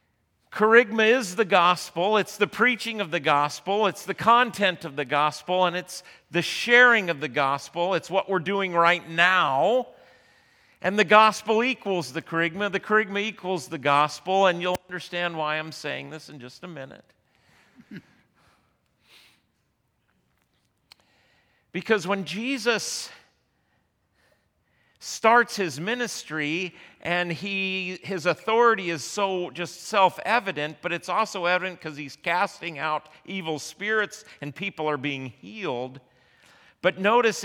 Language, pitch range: English, 155-205 Hz